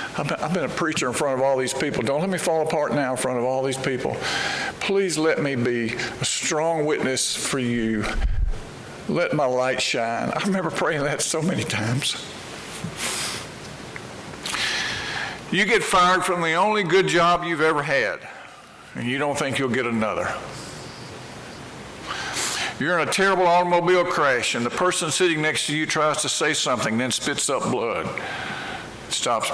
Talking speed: 165 wpm